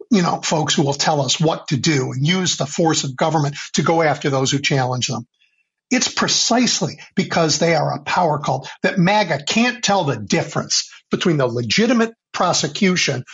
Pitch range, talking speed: 135-185 Hz, 185 wpm